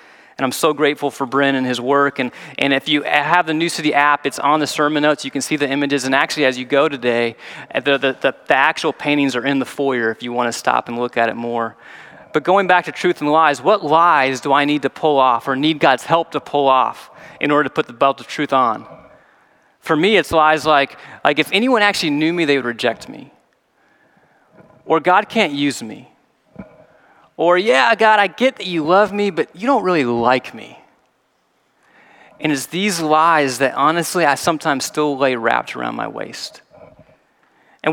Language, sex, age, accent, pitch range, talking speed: English, male, 30-49, American, 140-175 Hz, 215 wpm